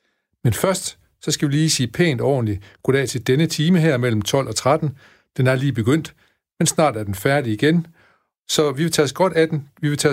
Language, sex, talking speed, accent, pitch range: Danish, male, 230 wpm, native, 120-160 Hz